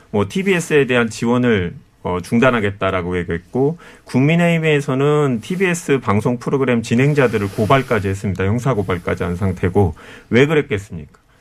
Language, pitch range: Korean, 110-150 Hz